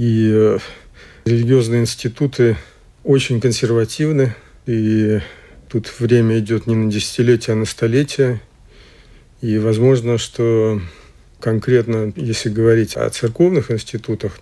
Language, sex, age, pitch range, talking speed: Russian, male, 50-69, 105-120 Hz, 100 wpm